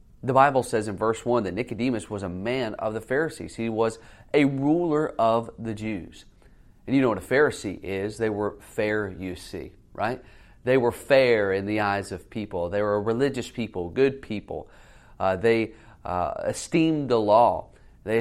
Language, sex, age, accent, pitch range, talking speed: English, male, 30-49, American, 100-125 Hz, 180 wpm